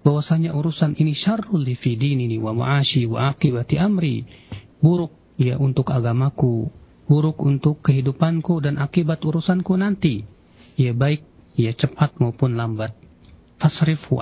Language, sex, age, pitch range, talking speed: Malay, male, 40-59, 115-155 Hz, 125 wpm